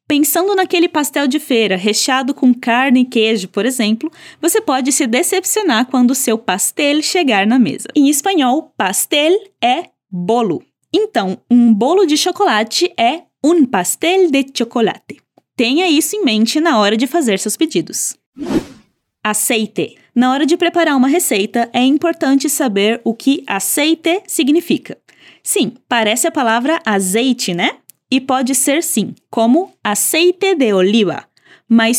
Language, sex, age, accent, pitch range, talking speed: Portuguese, female, 20-39, Brazilian, 230-335 Hz, 145 wpm